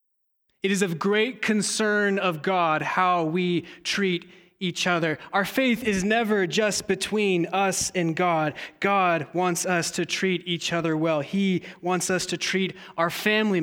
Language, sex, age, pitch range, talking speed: English, male, 20-39, 165-205 Hz, 160 wpm